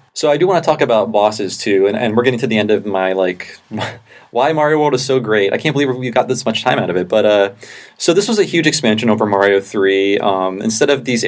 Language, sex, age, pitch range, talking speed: English, male, 20-39, 100-125 Hz, 270 wpm